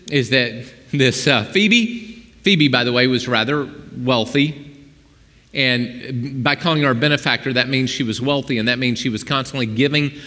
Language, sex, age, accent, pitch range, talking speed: English, male, 40-59, American, 125-165 Hz, 175 wpm